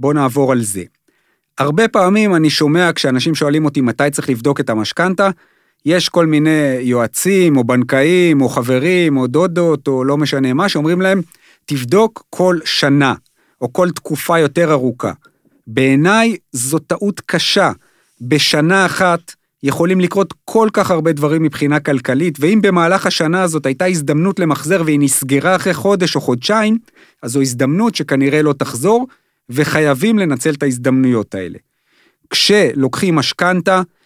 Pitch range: 145-190 Hz